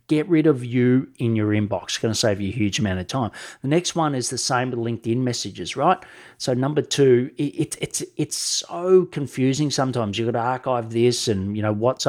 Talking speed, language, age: 230 wpm, English, 40-59